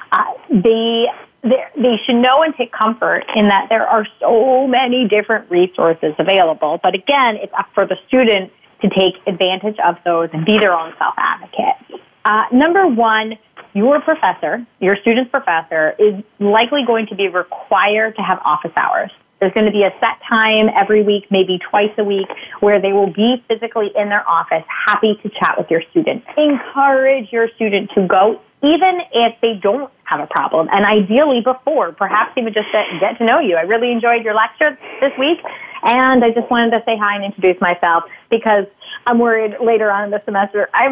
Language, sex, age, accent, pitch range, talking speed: English, female, 30-49, American, 195-240 Hz, 190 wpm